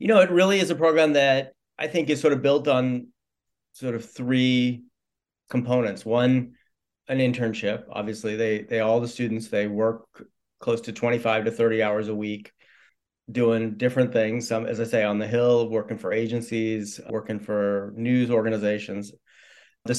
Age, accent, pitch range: 40-59, American, 110-130 Hz